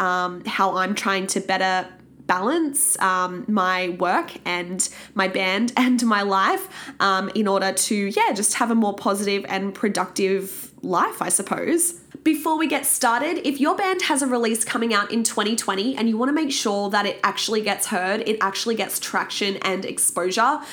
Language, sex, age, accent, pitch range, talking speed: English, female, 20-39, Australian, 195-250 Hz, 180 wpm